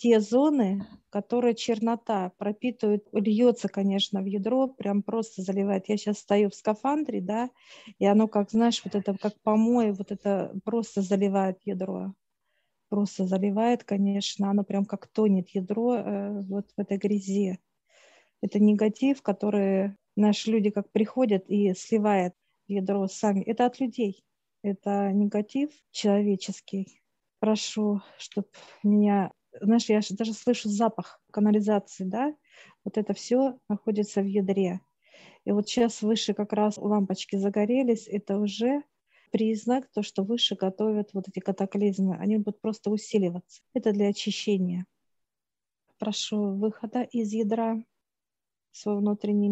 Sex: female